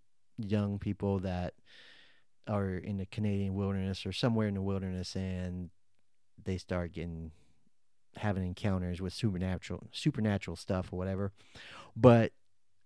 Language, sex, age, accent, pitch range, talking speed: English, male, 30-49, American, 95-115 Hz, 120 wpm